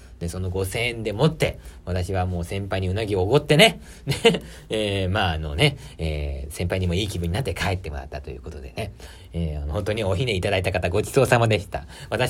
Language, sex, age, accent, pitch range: Japanese, male, 40-59, native, 85-140 Hz